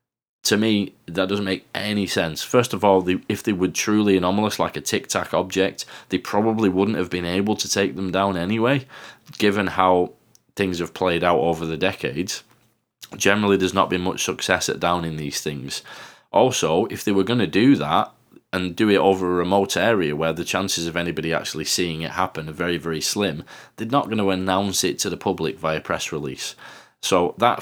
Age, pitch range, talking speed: 20-39, 80-100 Hz, 200 wpm